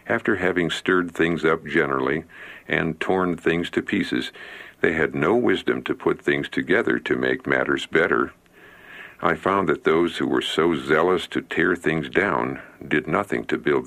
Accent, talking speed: American, 170 wpm